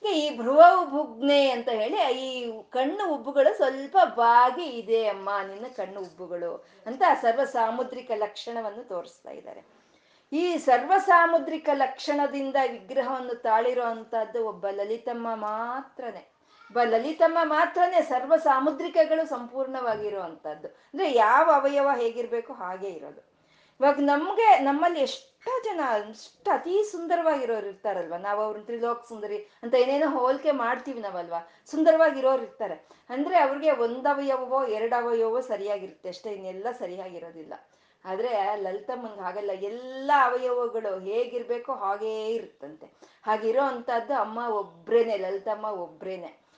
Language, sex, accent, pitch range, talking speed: Kannada, female, native, 210-280 Hz, 105 wpm